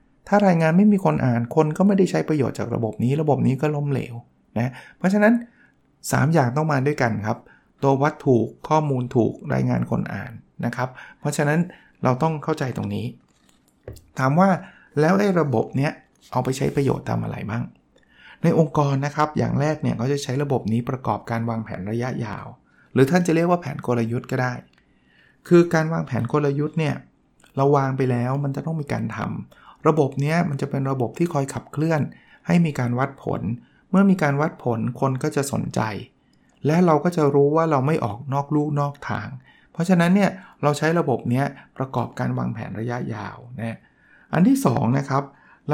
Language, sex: Thai, male